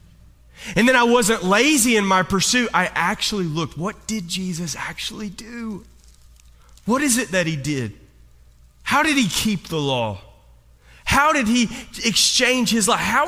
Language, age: English, 30-49